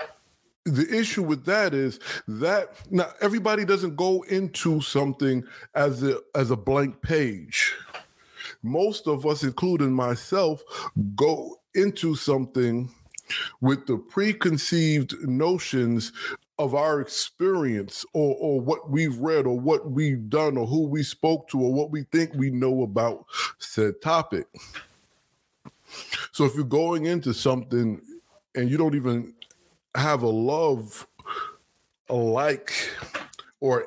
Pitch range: 130-180 Hz